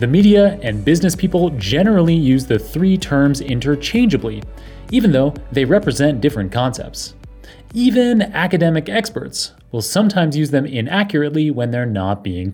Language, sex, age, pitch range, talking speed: English, male, 30-49, 115-165 Hz, 140 wpm